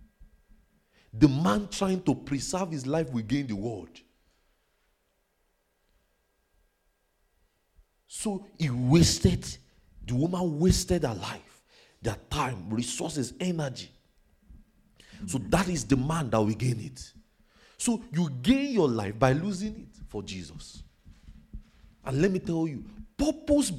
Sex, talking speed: male, 120 wpm